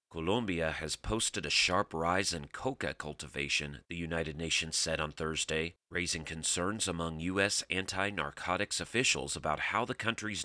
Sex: male